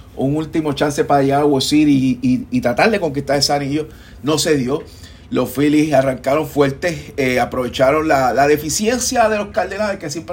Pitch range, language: 125-160 Hz, Spanish